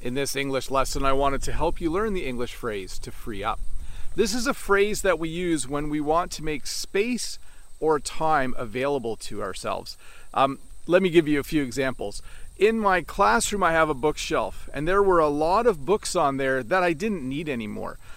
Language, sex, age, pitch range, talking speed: English, male, 40-59, 135-190 Hz, 210 wpm